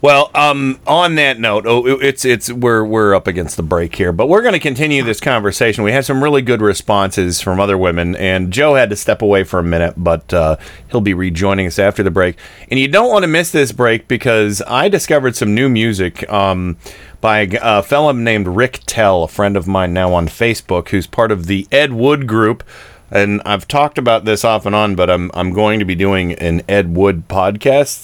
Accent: American